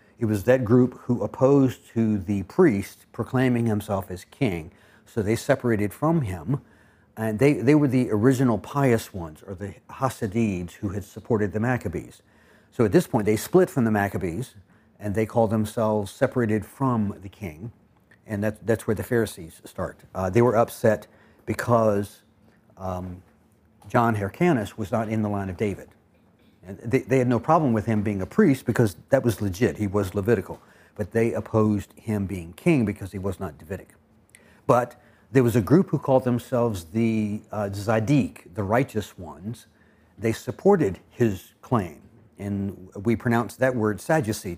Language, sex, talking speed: English, male, 165 wpm